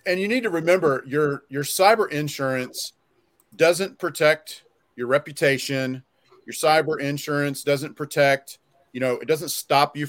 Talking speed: 145 wpm